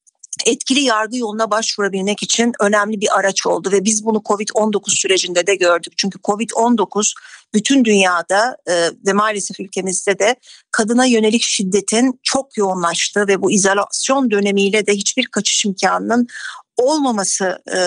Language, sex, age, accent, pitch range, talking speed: Turkish, female, 50-69, native, 200-250 Hz, 130 wpm